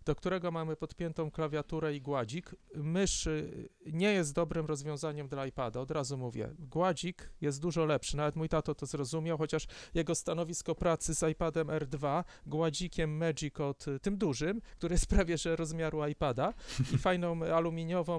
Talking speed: 150 wpm